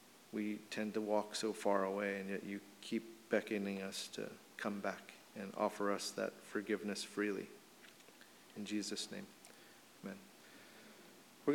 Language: English